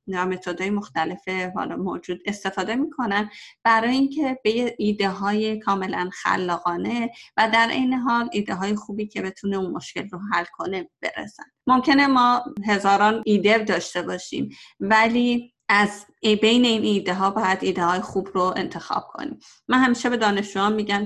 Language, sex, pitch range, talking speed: Persian, female, 185-225 Hz, 150 wpm